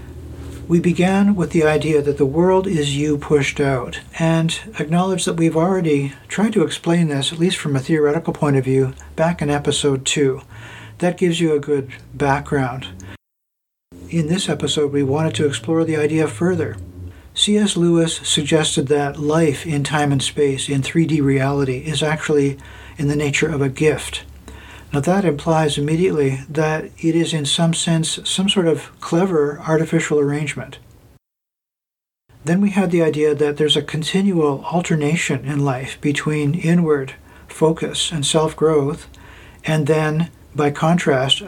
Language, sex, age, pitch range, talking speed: English, male, 50-69, 140-165 Hz, 155 wpm